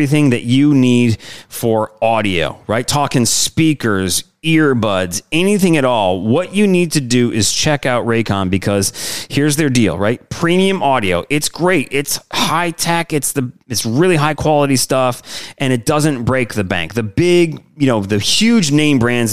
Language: English